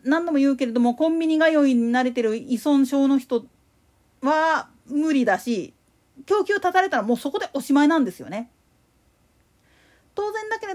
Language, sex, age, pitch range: Japanese, female, 40-59, 245-345 Hz